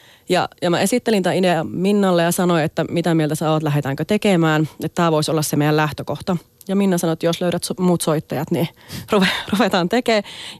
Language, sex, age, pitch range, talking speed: Finnish, female, 30-49, 160-190 Hz, 195 wpm